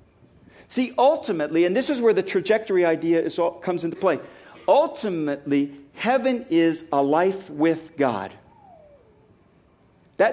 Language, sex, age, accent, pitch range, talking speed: English, male, 50-69, American, 175-245 Hz, 130 wpm